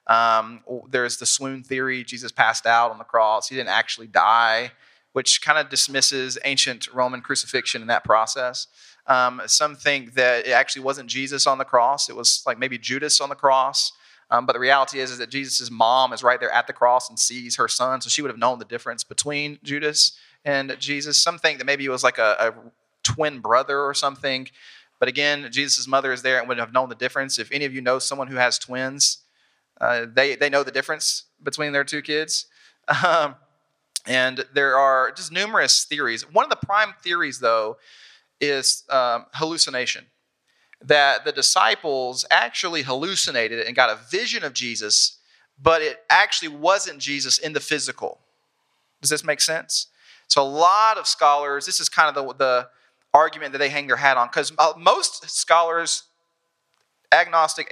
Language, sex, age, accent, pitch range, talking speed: English, male, 30-49, American, 125-145 Hz, 185 wpm